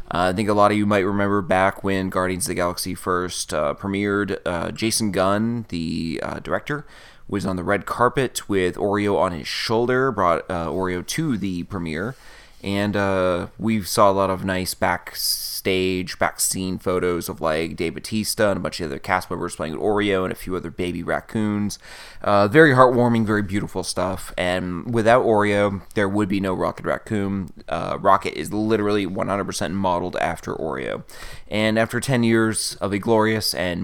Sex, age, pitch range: male, 20-39, 95-110 Hz